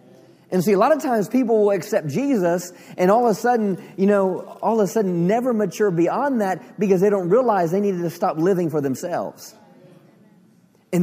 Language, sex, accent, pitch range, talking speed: English, male, American, 160-210 Hz, 200 wpm